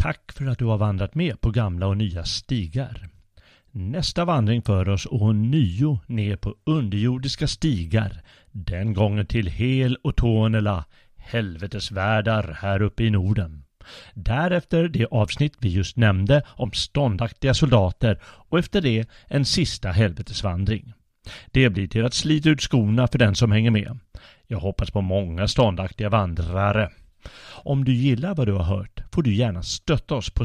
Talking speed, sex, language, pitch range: 160 wpm, male, Swedish, 100-130 Hz